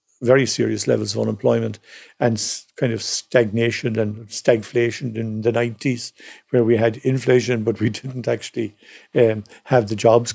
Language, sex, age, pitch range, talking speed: English, male, 50-69, 110-125 Hz, 150 wpm